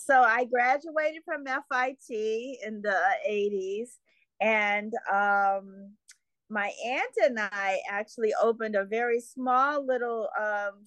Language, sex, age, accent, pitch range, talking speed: English, female, 40-59, American, 205-255 Hz, 115 wpm